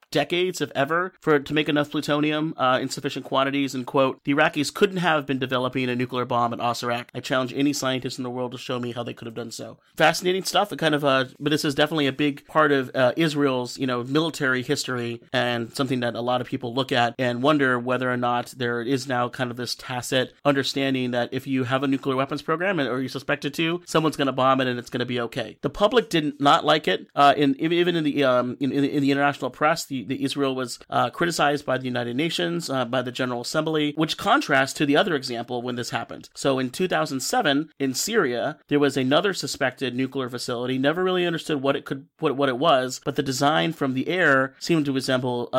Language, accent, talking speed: English, American, 235 wpm